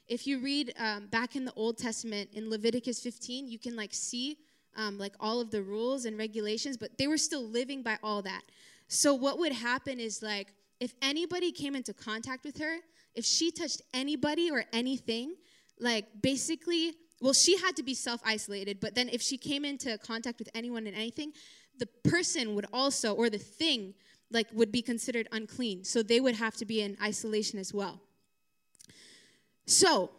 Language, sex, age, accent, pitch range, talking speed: English, female, 20-39, American, 225-295 Hz, 185 wpm